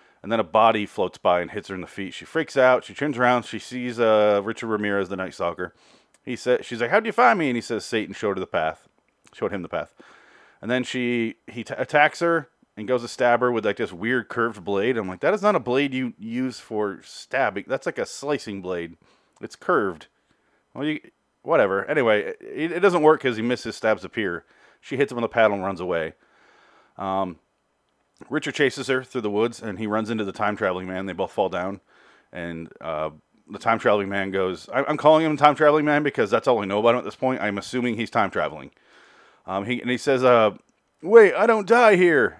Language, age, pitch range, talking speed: English, 30-49, 100-135 Hz, 225 wpm